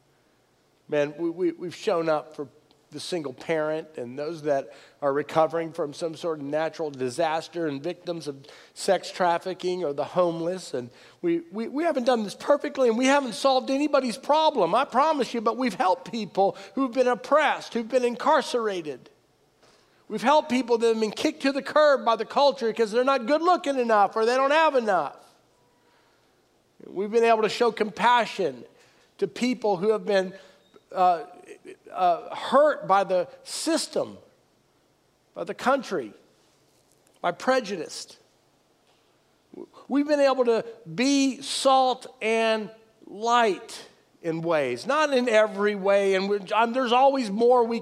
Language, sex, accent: English, male, American